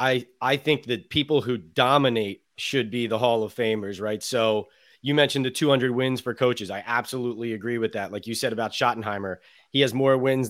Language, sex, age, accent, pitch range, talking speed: English, male, 30-49, American, 110-135 Hz, 205 wpm